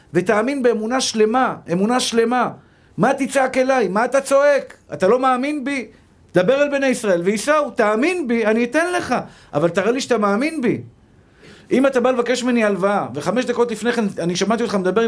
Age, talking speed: 50-69, 180 wpm